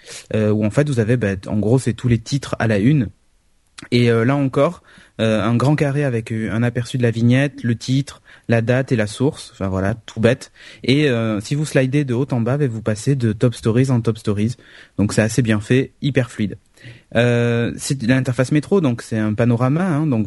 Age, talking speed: 30-49, 220 wpm